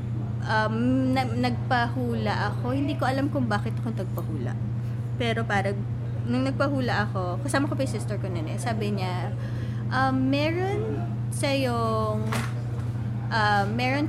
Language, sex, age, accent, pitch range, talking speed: English, female, 20-39, Filipino, 115-120 Hz, 130 wpm